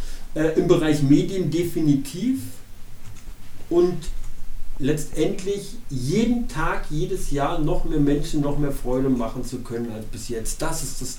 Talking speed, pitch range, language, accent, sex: 135 wpm, 120-150 Hz, German, German, male